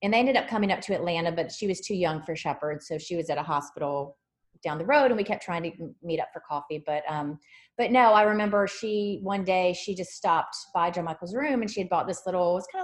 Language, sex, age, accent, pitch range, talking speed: English, female, 30-49, American, 160-205 Hz, 275 wpm